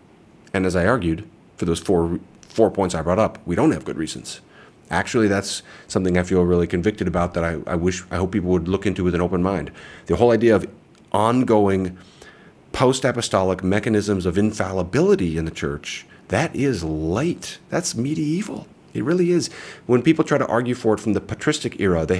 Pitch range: 90-120 Hz